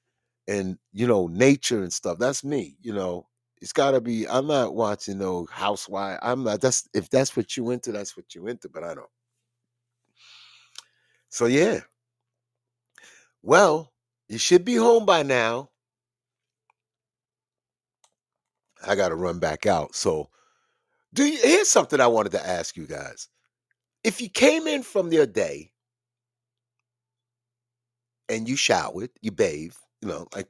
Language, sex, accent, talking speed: English, male, American, 150 wpm